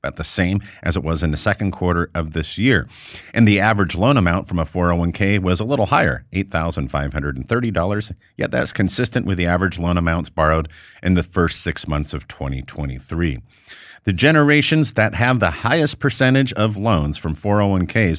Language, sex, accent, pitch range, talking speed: English, male, American, 85-115 Hz, 170 wpm